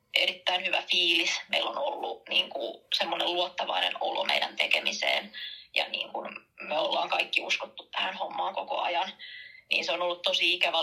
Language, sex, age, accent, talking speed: Finnish, female, 20-39, native, 165 wpm